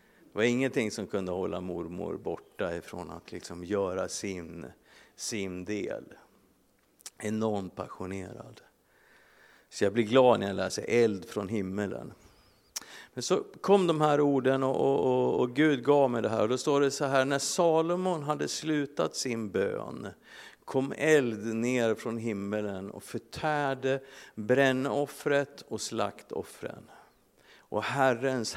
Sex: male